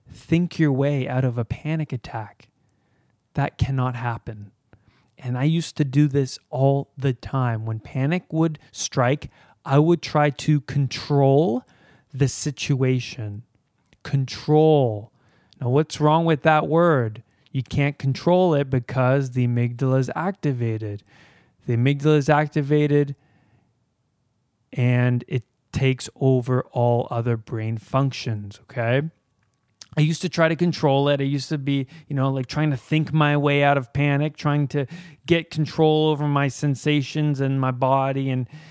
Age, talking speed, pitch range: 20-39, 145 wpm, 120-150 Hz